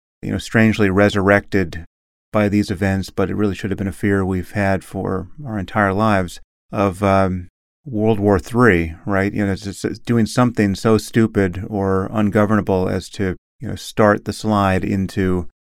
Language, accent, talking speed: English, American, 165 wpm